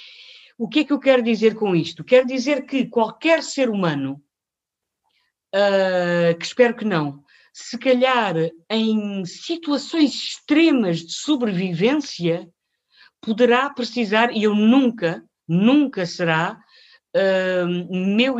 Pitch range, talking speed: 180-250 Hz, 110 wpm